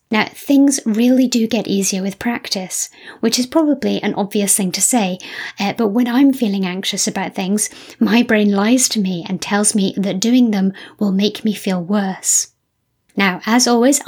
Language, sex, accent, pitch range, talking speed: English, female, British, 195-235 Hz, 185 wpm